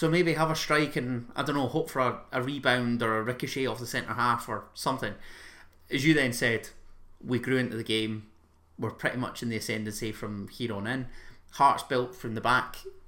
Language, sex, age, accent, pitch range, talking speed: English, male, 30-49, British, 110-135 Hz, 215 wpm